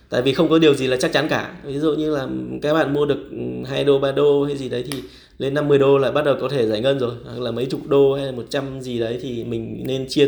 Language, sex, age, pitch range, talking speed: Vietnamese, male, 20-39, 115-140 Hz, 300 wpm